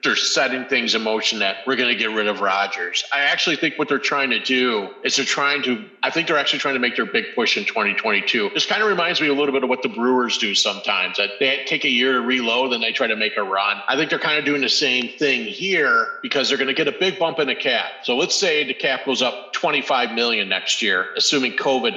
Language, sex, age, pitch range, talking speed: English, male, 40-59, 115-155 Hz, 270 wpm